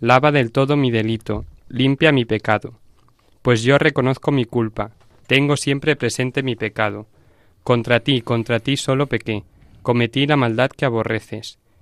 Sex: male